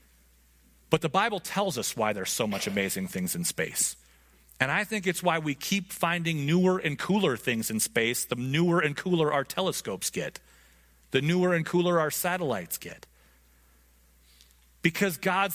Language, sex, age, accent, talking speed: English, male, 30-49, American, 165 wpm